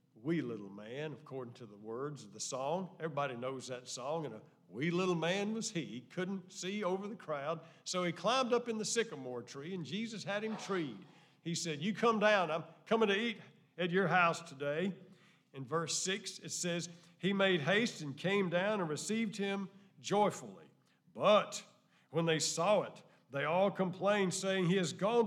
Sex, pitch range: male, 160-200 Hz